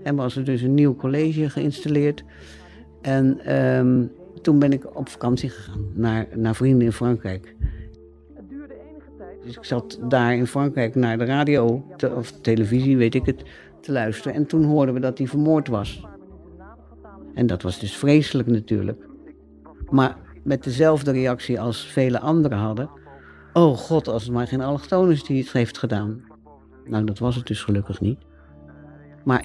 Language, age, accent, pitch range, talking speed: Dutch, 60-79, Dutch, 95-135 Hz, 160 wpm